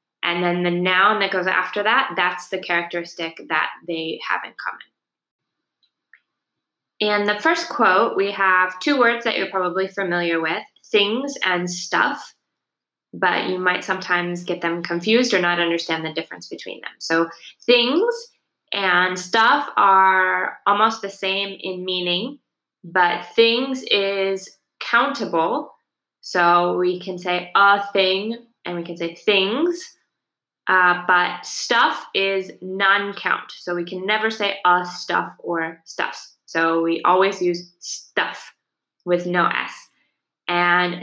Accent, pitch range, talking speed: American, 175-205 Hz, 135 wpm